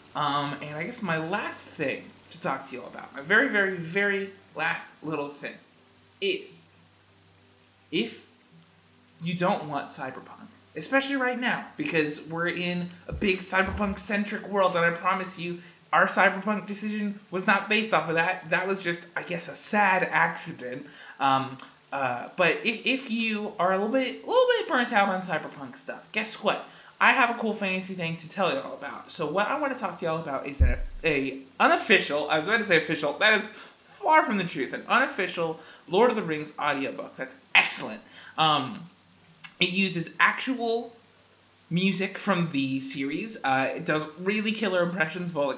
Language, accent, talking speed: English, American, 180 wpm